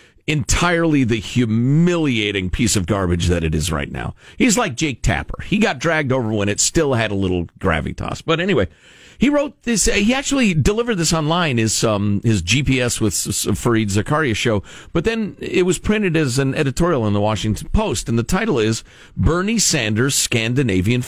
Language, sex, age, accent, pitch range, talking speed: English, male, 50-69, American, 105-170 Hz, 180 wpm